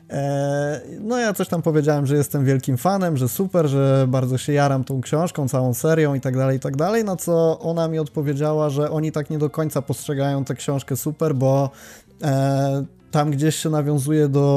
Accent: native